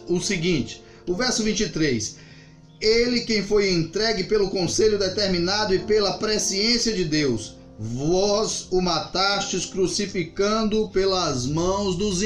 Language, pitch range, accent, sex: Portuguese, 165-205 Hz, Brazilian, male